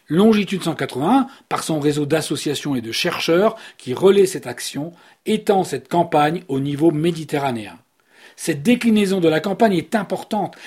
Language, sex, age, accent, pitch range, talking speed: French, male, 40-59, French, 145-195 Hz, 145 wpm